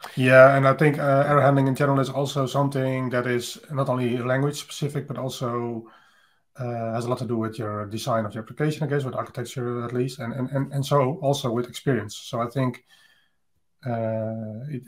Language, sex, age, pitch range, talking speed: English, male, 30-49, 115-135 Hz, 205 wpm